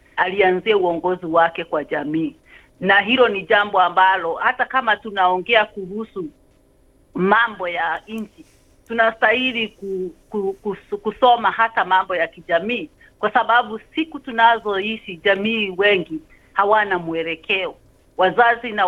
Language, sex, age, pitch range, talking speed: Swahili, female, 40-59, 185-245 Hz, 120 wpm